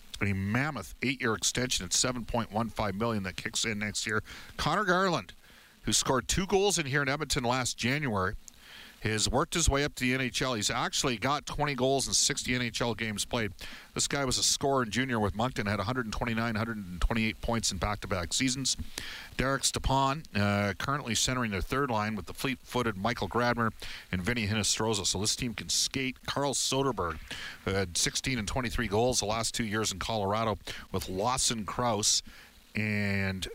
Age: 50-69